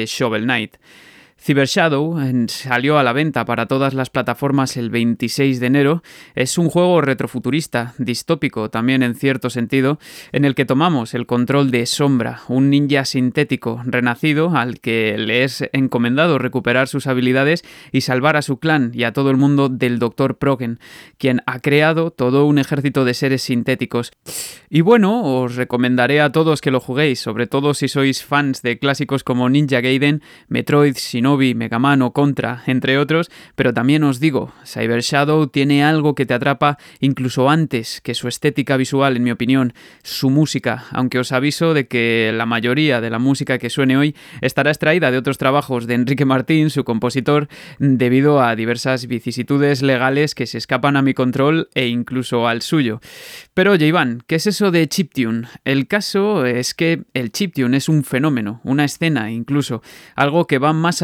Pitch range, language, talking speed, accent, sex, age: 125-145 Hz, Spanish, 175 wpm, Spanish, male, 20-39